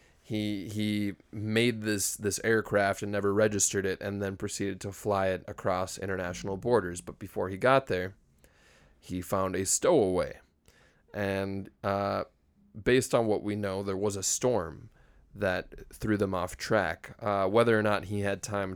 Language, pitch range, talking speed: English, 90-105 Hz, 165 wpm